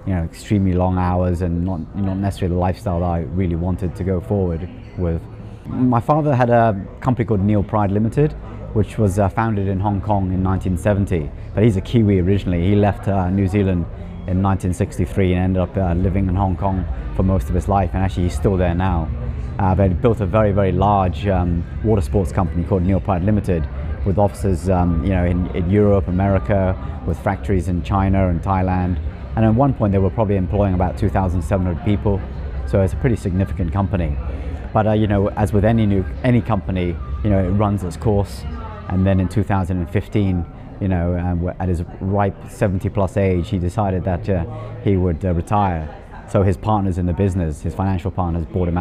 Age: 30-49